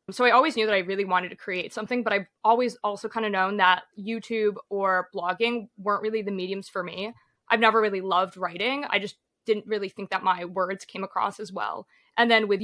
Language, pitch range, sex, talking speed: English, 190-215 Hz, female, 230 wpm